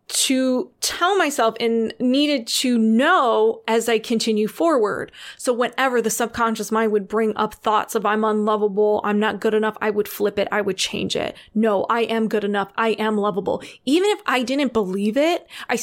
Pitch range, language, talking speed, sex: 215-245 Hz, English, 190 wpm, female